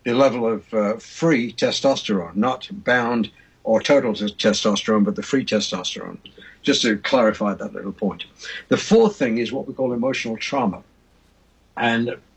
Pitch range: 105-135 Hz